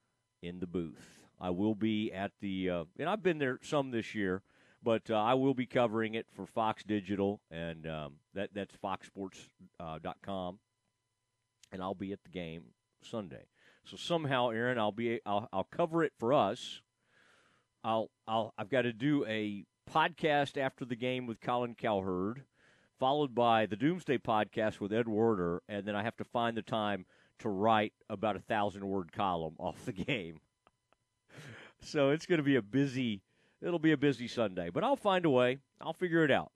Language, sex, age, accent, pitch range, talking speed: English, male, 40-59, American, 100-130 Hz, 180 wpm